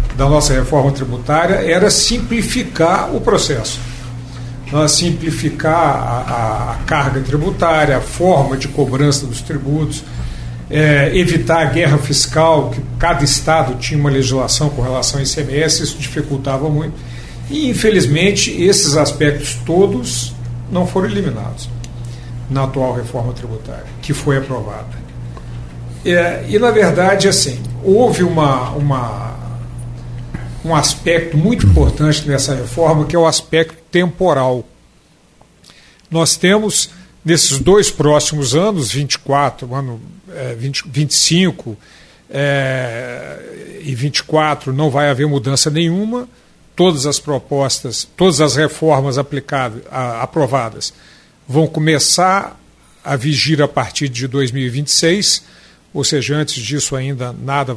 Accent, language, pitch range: Brazilian, Portuguese, 125-160 Hz